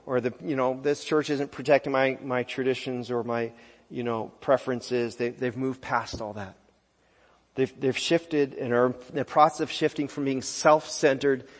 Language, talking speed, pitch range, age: English, 185 wpm, 120-145 Hz, 40-59